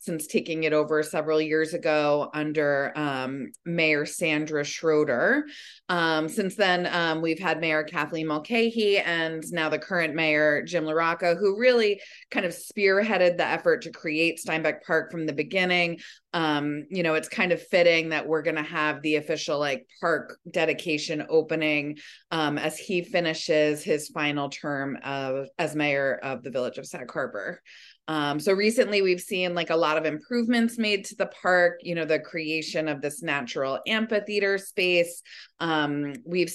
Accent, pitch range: American, 155-190 Hz